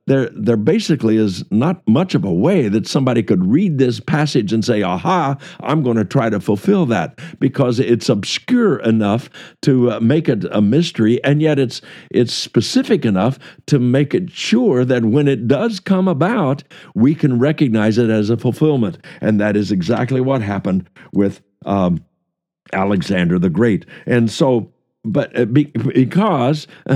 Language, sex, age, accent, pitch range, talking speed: English, male, 60-79, American, 115-160 Hz, 165 wpm